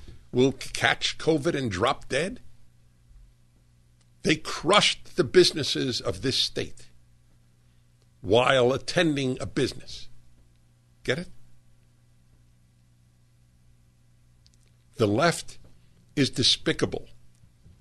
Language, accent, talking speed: English, American, 80 wpm